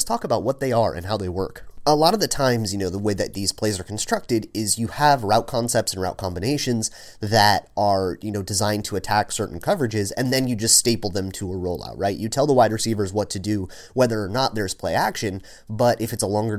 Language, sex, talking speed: English, male, 255 wpm